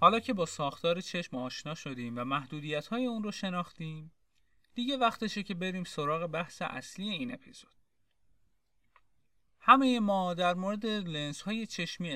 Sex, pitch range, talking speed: male, 135-195 Hz, 135 wpm